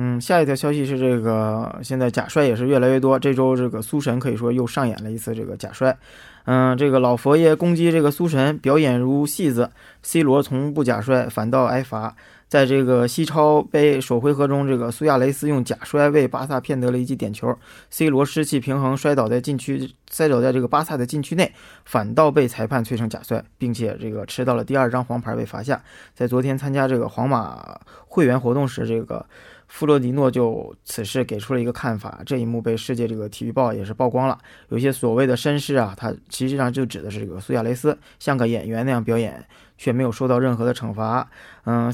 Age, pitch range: 20-39, 115-135 Hz